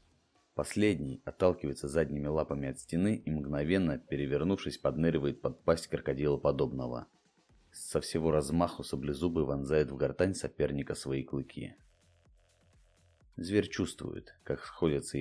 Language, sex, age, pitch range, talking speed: Russian, male, 30-49, 70-95 Hz, 110 wpm